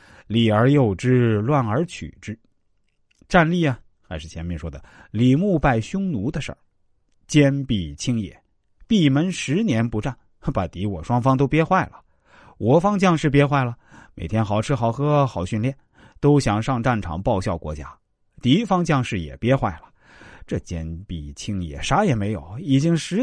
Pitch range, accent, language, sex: 90-135 Hz, native, Chinese, male